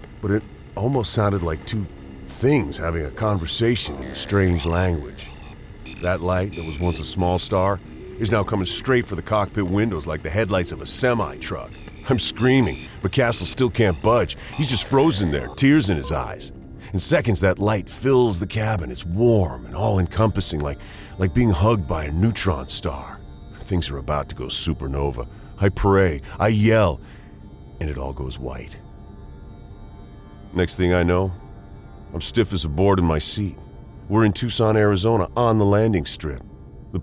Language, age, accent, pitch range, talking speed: English, 40-59, American, 85-115 Hz, 170 wpm